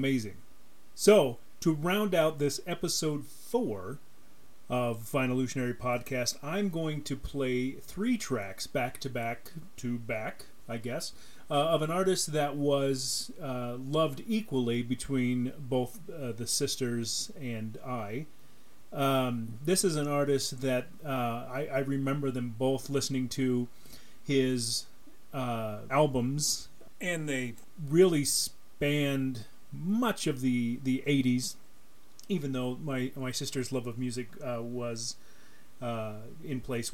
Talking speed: 130 wpm